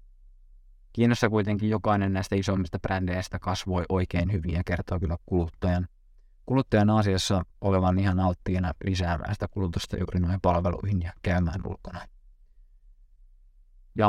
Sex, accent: male, native